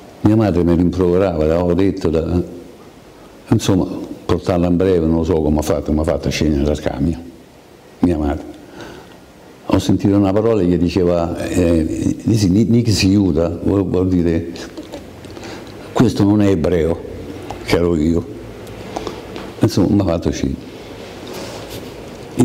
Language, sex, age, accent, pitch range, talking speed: Italian, male, 60-79, native, 85-100 Hz, 135 wpm